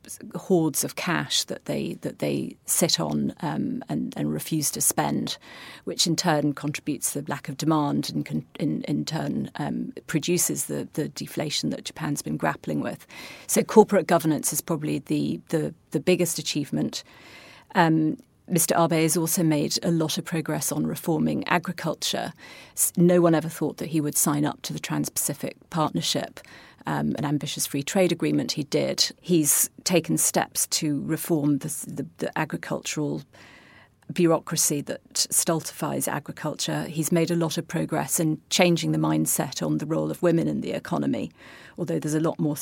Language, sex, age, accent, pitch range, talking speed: English, female, 40-59, British, 150-170 Hz, 165 wpm